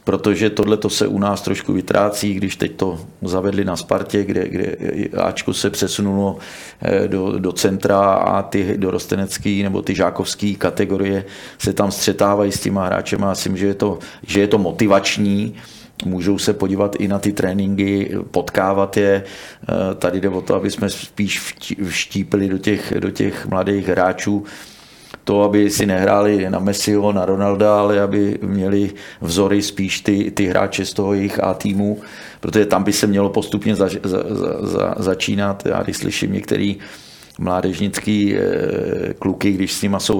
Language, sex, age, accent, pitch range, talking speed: Czech, male, 40-59, native, 95-100 Hz, 150 wpm